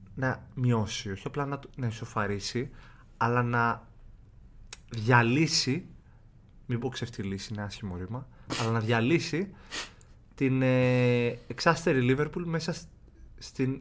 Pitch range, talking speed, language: 105-135 Hz, 115 wpm, Greek